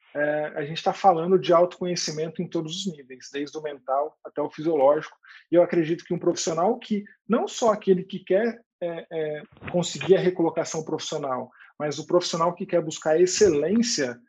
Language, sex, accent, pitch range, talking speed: Portuguese, male, Brazilian, 155-180 Hz, 165 wpm